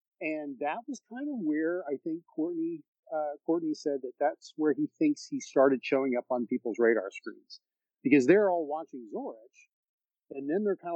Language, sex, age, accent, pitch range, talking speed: English, male, 50-69, American, 125-180 Hz, 185 wpm